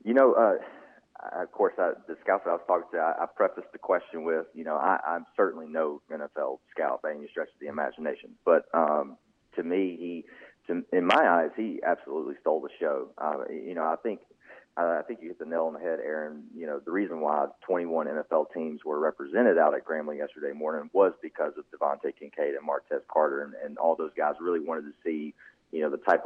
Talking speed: 225 wpm